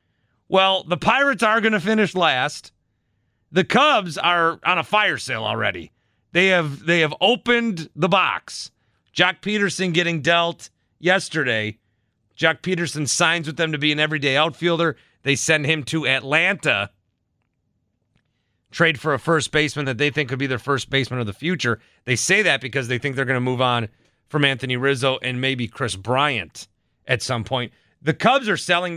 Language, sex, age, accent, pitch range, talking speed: English, male, 30-49, American, 125-190 Hz, 175 wpm